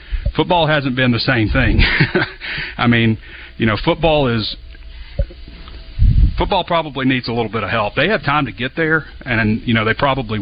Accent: American